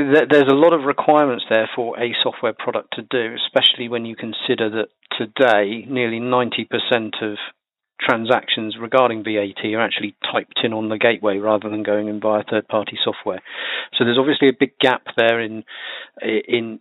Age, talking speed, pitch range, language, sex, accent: 40-59, 170 wpm, 115-135 Hz, English, male, British